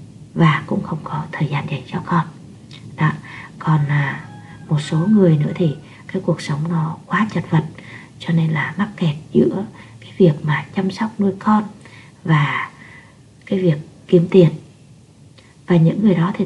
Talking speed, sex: 170 wpm, female